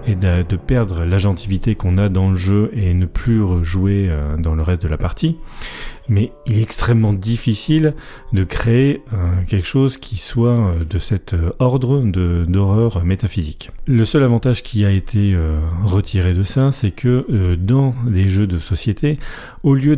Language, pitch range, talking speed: French, 90-120 Hz, 160 wpm